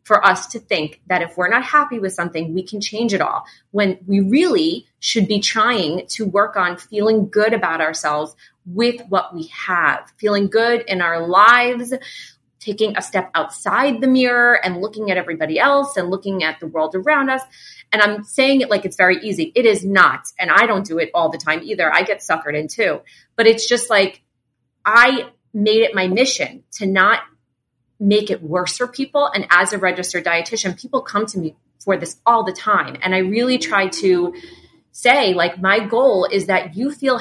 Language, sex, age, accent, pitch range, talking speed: English, female, 30-49, American, 180-240 Hz, 200 wpm